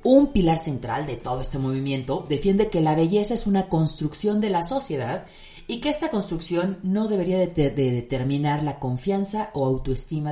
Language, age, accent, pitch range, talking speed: Spanish, 40-59, Mexican, 145-200 Hz, 165 wpm